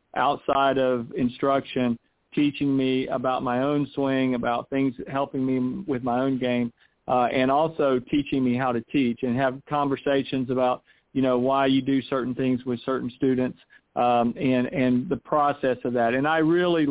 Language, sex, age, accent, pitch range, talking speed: English, male, 40-59, American, 130-140 Hz, 175 wpm